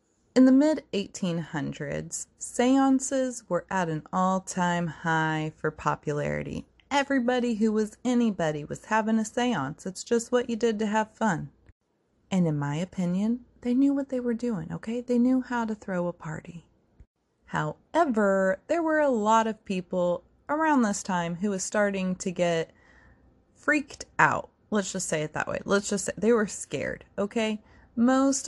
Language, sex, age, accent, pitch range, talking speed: English, female, 30-49, American, 175-235 Hz, 160 wpm